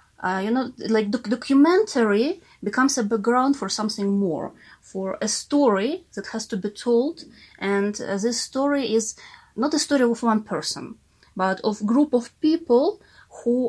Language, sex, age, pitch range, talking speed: English, female, 20-39, 180-240 Hz, 160 wpm